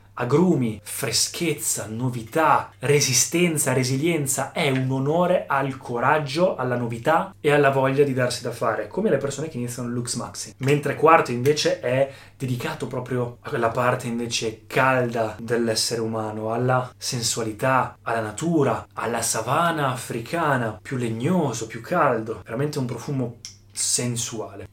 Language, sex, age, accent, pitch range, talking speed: Italian, male, 20-39, native, 115-145 Hz, 135 wpm